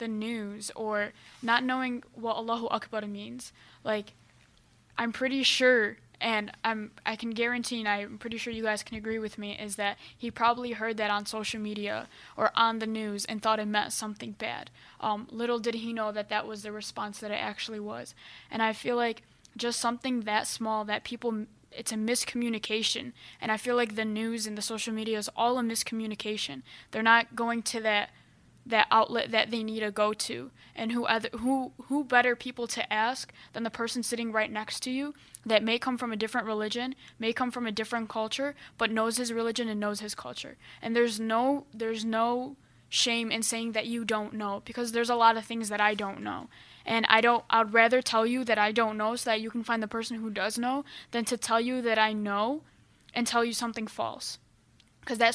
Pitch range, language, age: 215-235 Hz, English, 10-29